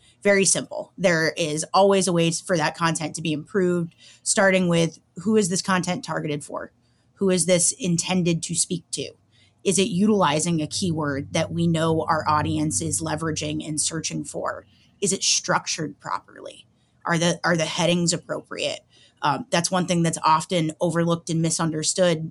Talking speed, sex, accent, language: 165 wpm, female, American, English